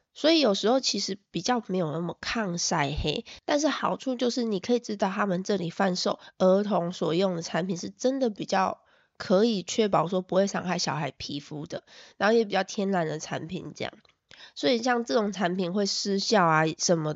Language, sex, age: Chinese, female, 20-39